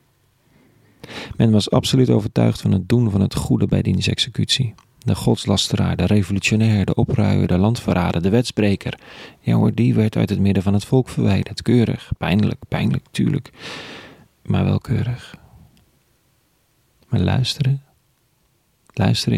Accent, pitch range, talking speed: Dutch, 100-120 Hz, 135 wpm